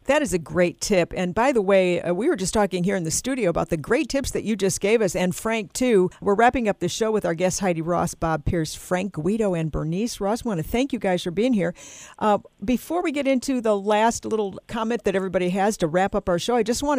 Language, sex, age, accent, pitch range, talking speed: English, female, 50-69, American, 175-230 Hz, 270 wpm